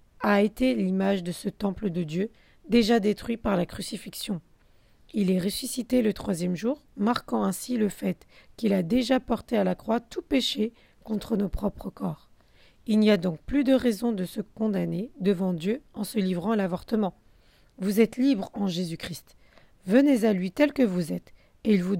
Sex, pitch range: female, 185-225 Hz